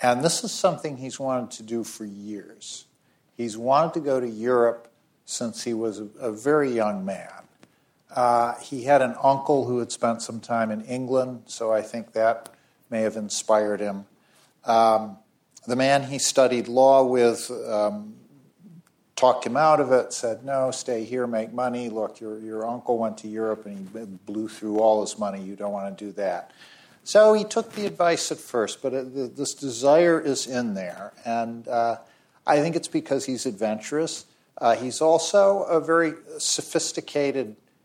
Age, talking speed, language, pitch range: 50-69, 175 wpm, English, 110-140 Hz